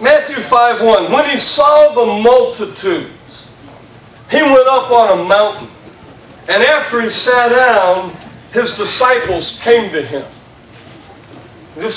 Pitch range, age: 195-255 Hz, 40-59